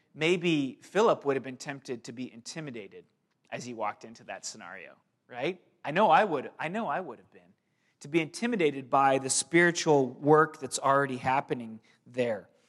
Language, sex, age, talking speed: English, male, 30-49, 175 wpm